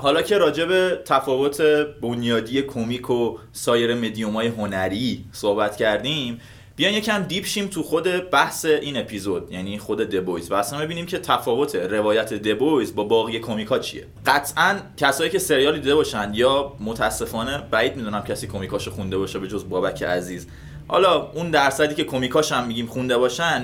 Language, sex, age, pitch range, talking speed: Persian, male, 20-39, 115-160 Hz, 150 wpm